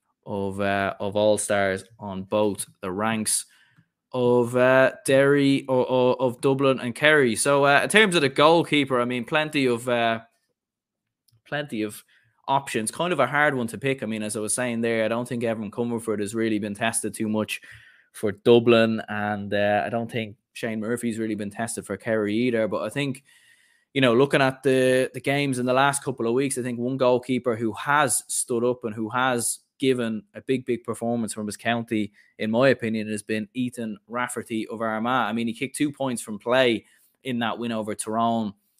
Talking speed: 200 wpm